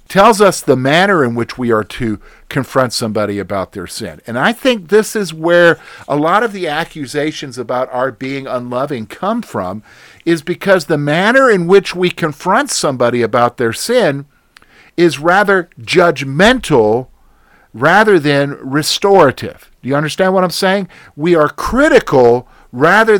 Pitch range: 140-210 Hz